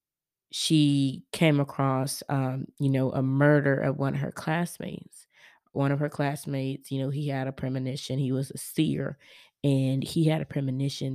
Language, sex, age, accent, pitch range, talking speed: English, female, 20-39, American, 135-160 Hz, 170 wpm